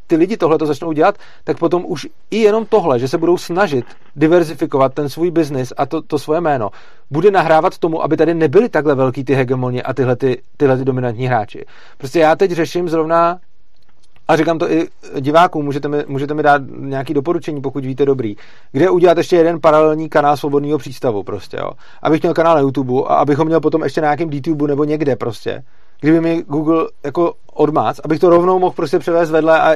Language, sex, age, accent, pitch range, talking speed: Czech, male, 40-59, native, 140-165 Hz, 190 wpm